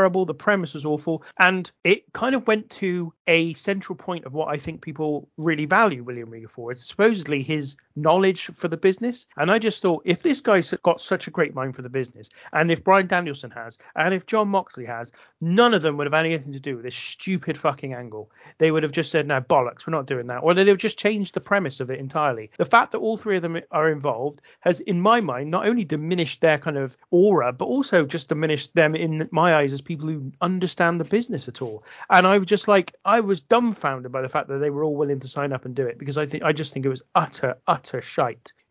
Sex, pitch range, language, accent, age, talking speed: male, 140-185 Hz, English, British, 30-49, 245 wpm